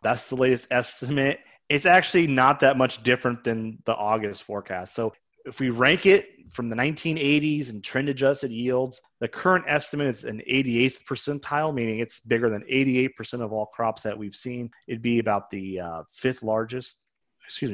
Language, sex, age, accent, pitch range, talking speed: English, male, 30-49, American, 110-145 Hz, 175 wpm